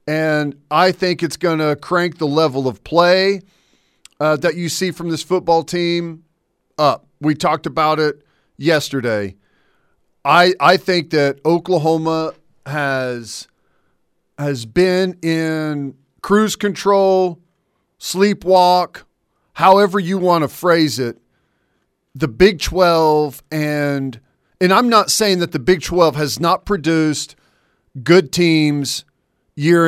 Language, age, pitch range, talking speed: English, 40-59, 150-185 Hz, 125 wpm